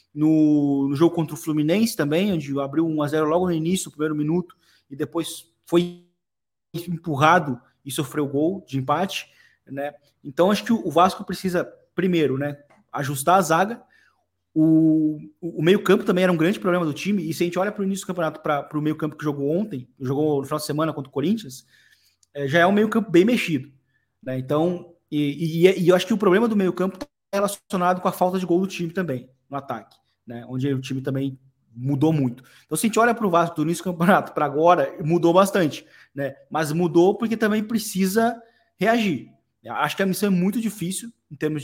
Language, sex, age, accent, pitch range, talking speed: Portuguese, male, 20-39, Brazilian, 150-180 Hz, 215 wpm